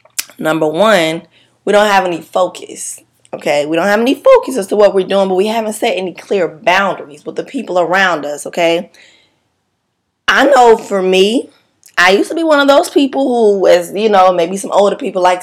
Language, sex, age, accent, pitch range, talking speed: English, female, 20-39, American, 175-220 Hz, 200 wpm